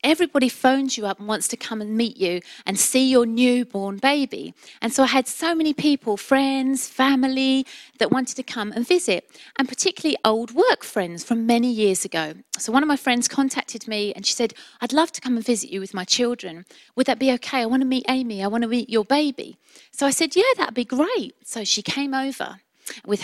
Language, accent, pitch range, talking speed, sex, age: English, British, 225-290 Hz, 225 wpm, female, 30-49